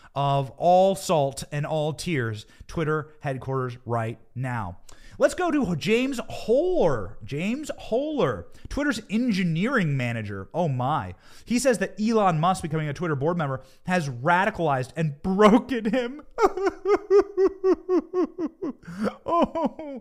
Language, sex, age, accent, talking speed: English, male, 30-49, American, 115 wpm